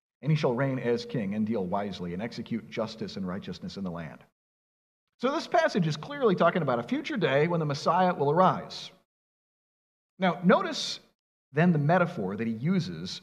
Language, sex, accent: English, male, American